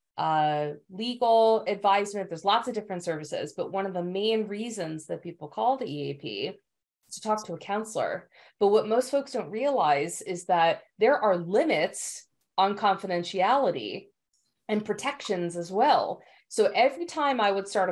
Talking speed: 160 wpm